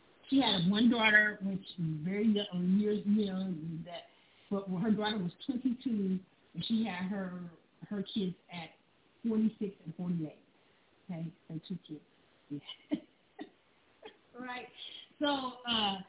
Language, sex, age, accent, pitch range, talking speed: English, female, 40-59, American, 185-245 Hz, 140 wpm